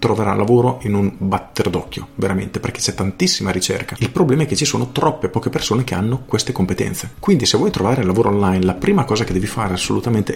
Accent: native